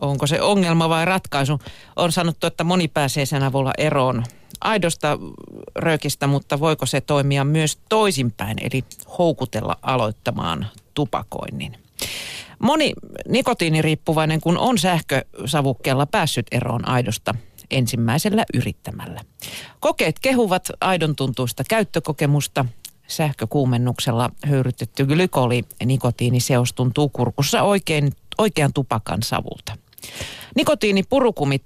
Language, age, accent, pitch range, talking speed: Finnish, 40-59, native, 120-165 Hz, 95 wpm